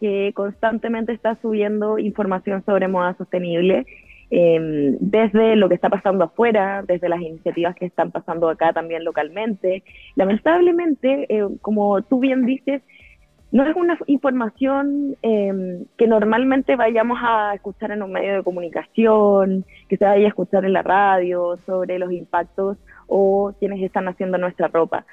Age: 20-39